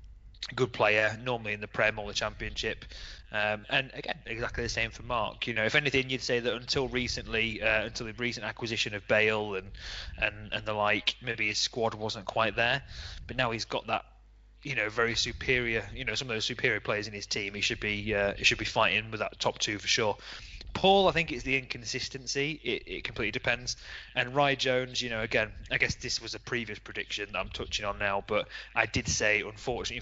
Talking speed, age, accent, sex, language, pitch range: 220 wpm, 20-39, British, male, English, 105-125 Hz